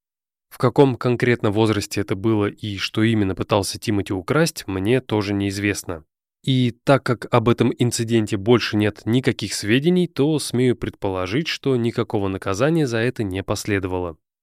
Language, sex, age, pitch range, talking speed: Russian, male, 20-39, 105-135 Hz, 145 wpm